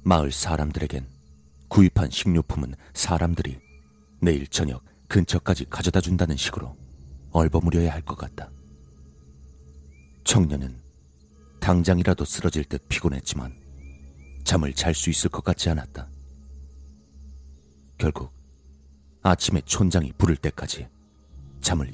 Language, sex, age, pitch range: Korean, male, 40-59, 70-85 Hz